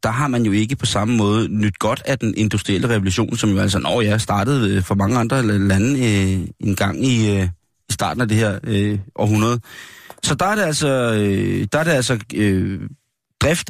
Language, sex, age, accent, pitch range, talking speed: Danish, male, 30-49, native, 100-130 Hz, 180 wpm